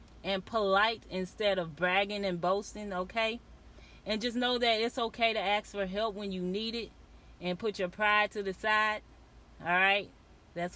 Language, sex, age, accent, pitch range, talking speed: English, female, 30-49, American, 175-210 Hz, 180 wpm